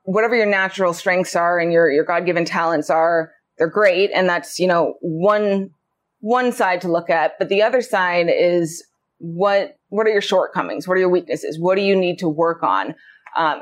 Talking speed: 205 wpm